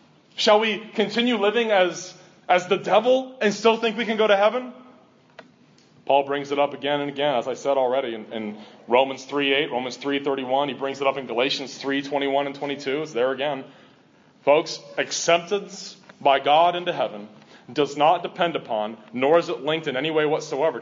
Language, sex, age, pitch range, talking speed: English, male, 30-49, 140-180 Hz, 180 wpm